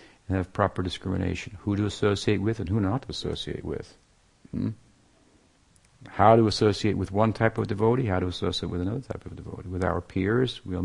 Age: 50-69